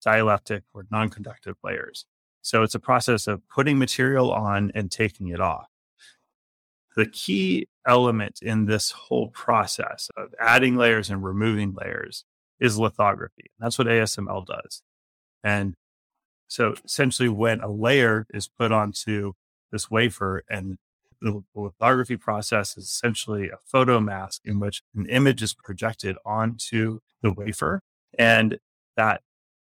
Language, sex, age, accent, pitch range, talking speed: English, male, 30-49, American, 100-120 Hz, 135 wpm